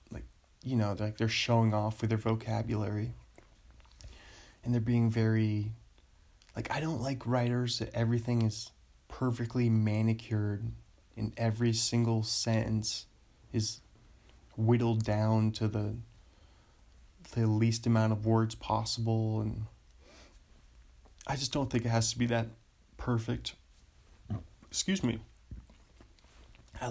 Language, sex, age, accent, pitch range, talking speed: English, male, 20-39, American, 105-120 Hz, 115 wpm